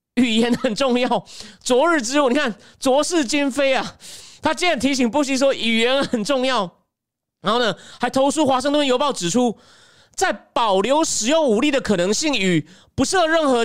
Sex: male